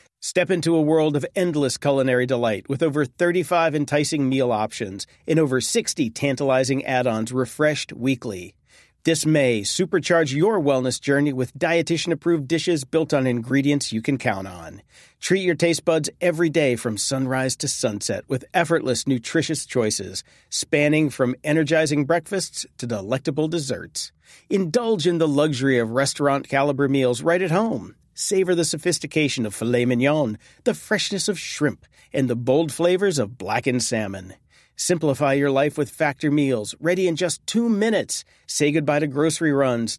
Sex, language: male, English